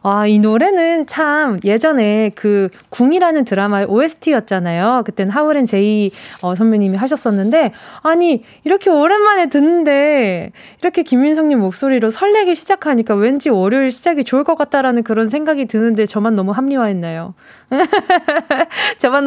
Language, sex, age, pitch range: Korean, female, 20-39, 215-320 Hz